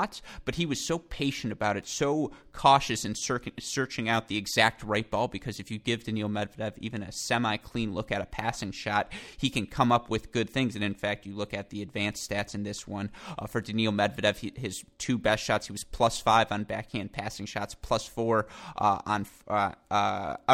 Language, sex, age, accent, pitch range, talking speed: English, male, 20-39, American, 105-120 Hz, 200 wpm